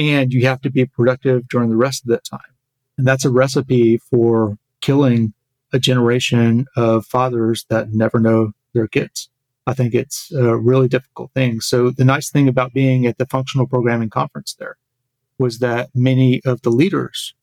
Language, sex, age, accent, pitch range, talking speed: English, male, 40-59, American, 120-130 Hz, 180 wpm